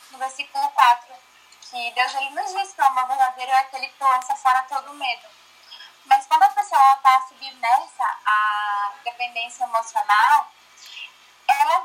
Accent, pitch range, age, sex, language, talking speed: Brazilian, 260-370 Hz, 10-29, female, Portuguese, 155 wpm